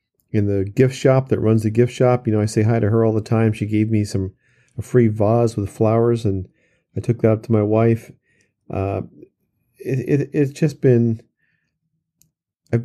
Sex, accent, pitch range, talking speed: male, American, 105-120 Hz, 200 wpm